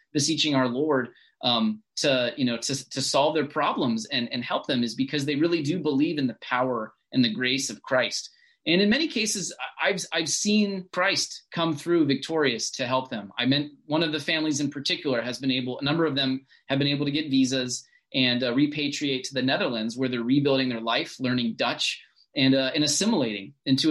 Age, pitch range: 30-49, 130-170 Hz